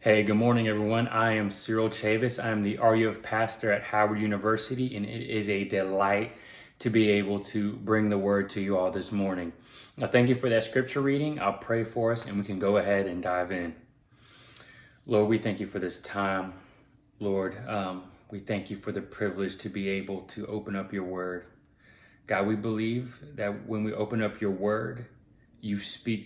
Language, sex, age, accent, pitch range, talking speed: English, male, 20-39, American, 100-115 Hz, 200 wpm